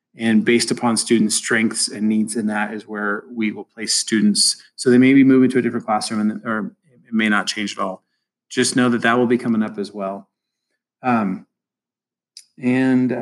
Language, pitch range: English, 110-130 Hz